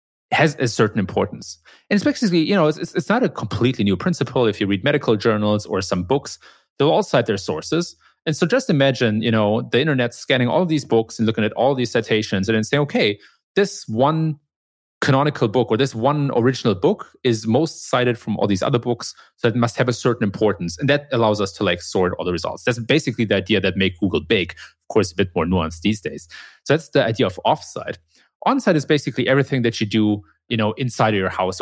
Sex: male